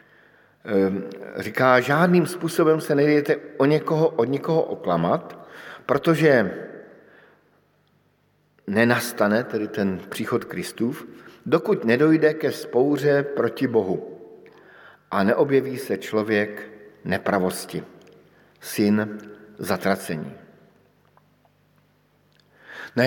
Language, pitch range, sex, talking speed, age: Slovak, 110-135 Hz, male, 80 wpm, 50-69